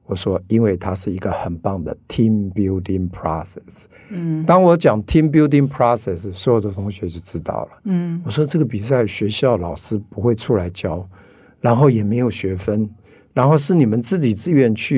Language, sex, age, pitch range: Chinese, male, 50-69, 100-135 Hz